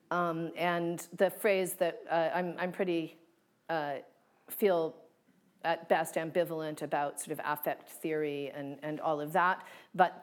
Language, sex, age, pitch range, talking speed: English, female, 40-59, 155-180 Hz, 145 wpm